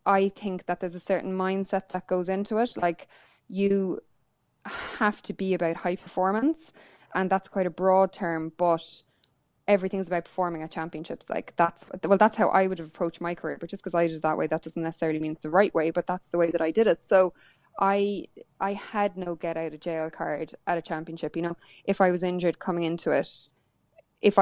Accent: Irish